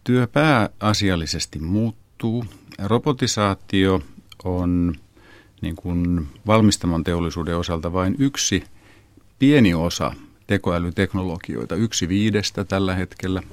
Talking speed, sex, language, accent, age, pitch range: 80 wpm, male, Finnish, native, 50-69, 85-105 Hz